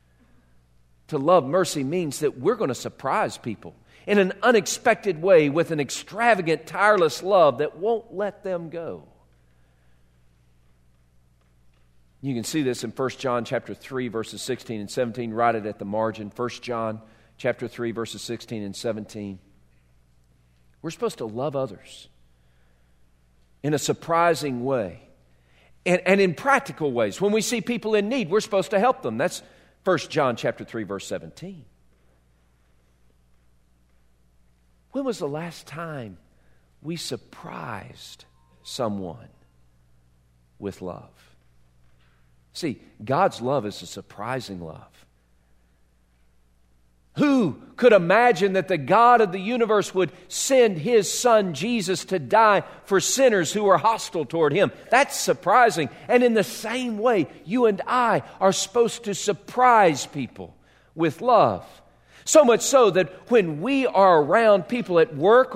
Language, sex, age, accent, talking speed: English, male, 40-59, American, 135 wpm